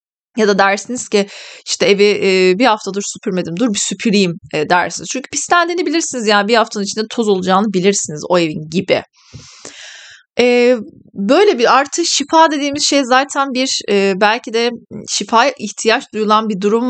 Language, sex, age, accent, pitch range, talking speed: Turkish, female, 30-49, native, 195-250 Hz, 150 wpm